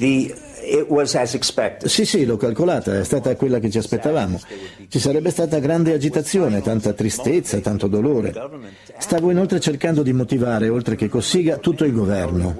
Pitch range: 110-150 Hz